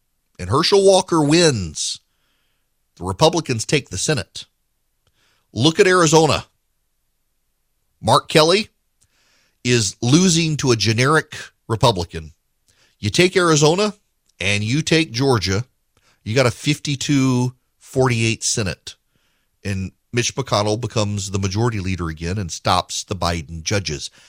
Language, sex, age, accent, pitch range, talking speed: English, male, 40-59, American, 95-135 Hz, 110 wpm